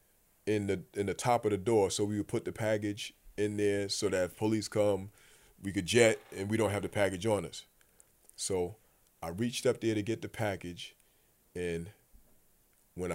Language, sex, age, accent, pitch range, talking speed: English, male, 30-49, American, 100-120 Hz, 195 wpm